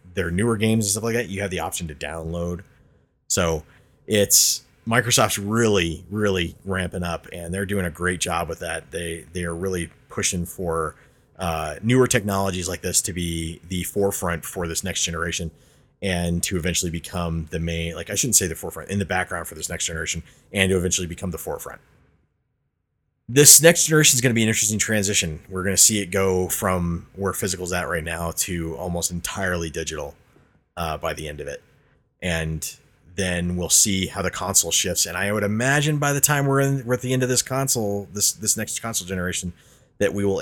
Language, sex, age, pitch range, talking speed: English, male, 30-49, 85-105 Hz, 205 wpm